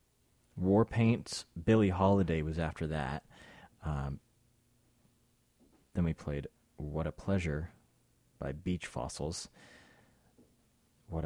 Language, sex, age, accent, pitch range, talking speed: English, male, 30-49, American, 80-105 Hz, 95 wpm